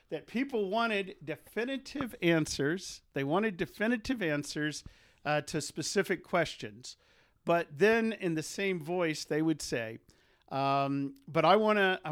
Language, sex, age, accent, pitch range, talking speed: English, male, 50-69, American, 135-175 Hz, 130 wpm